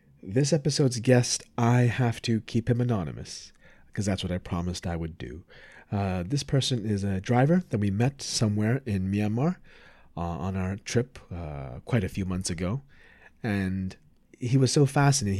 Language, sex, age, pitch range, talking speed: English, male, 30-49, 100-120 Hz, 170 wpm